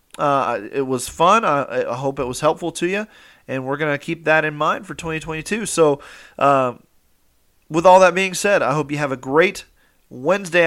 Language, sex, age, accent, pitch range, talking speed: English, male, 30-49, American, 135-170 Hz, 190 wpm